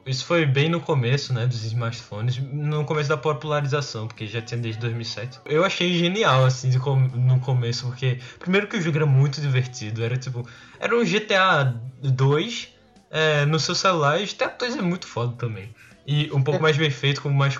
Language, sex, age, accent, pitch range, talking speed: Portuguese, male, 10-29, Brazilian, 125-165 Hz, 200 wpm